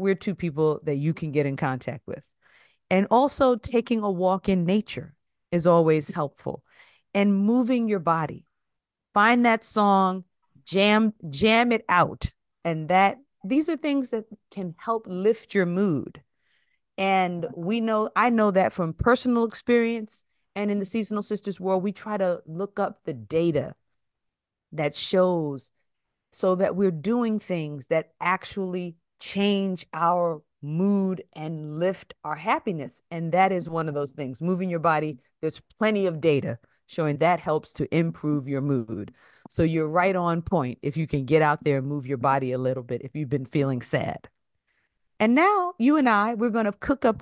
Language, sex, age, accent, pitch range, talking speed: English, female, 40-59, American, 160-210 Hz, 170 wpm